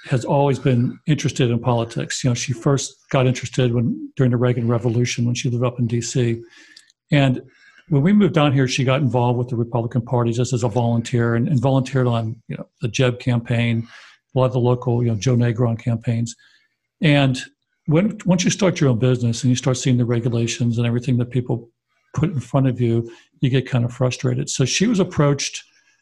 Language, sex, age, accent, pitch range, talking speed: English, male, 50-69, American, 120-135 Hz, 210 wpm